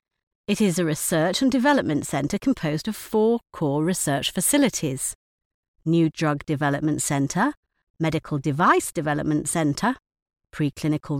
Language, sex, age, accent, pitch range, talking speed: English, female, 50-69, British, 155-225 Hz, 120 wpm